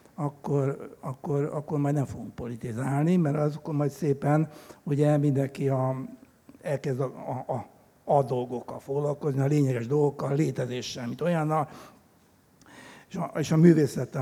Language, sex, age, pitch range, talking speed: Hungarian, male, 60-79, 130-155 Hz, 140 wpm